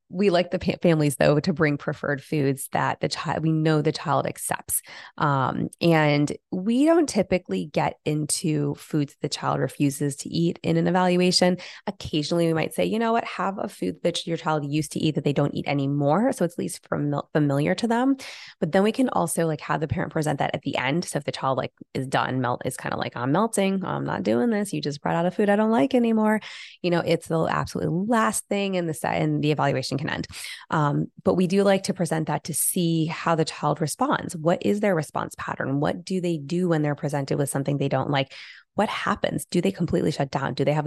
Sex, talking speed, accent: female, 235 wpm, American